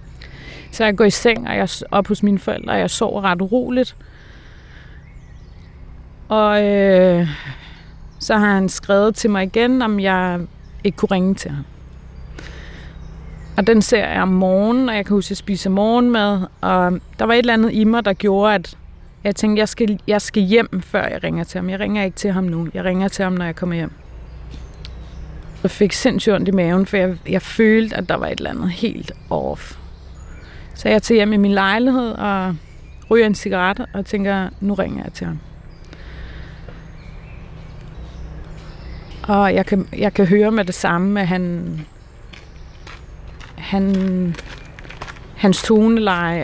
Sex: female